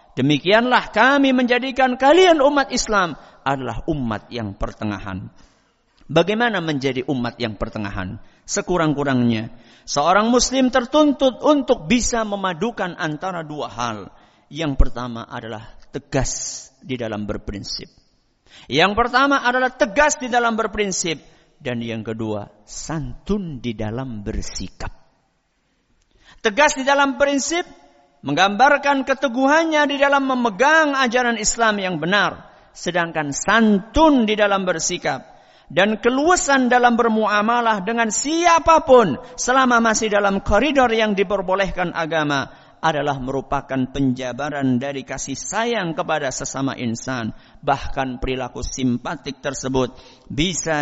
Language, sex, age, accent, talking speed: Indonesian, male, 50-69, native, 105 wpm